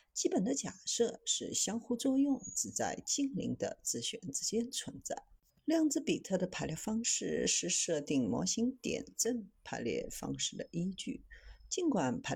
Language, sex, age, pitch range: Chinese, female, 50-69, 185-265 Hz